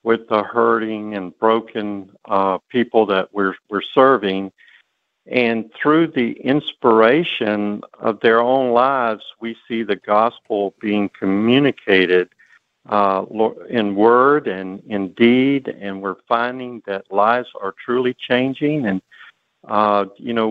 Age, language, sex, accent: 50-69, English, male, American